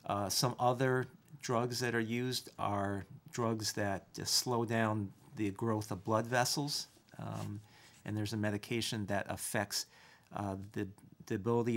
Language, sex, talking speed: English, male, 150 wpm